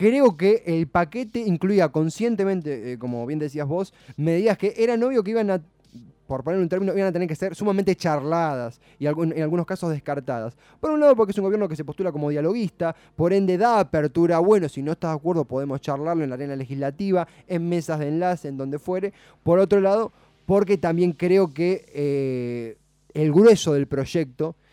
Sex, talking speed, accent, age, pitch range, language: male, 195 wpm, Argentinian, 20-39, 140-180 Hz, Spanish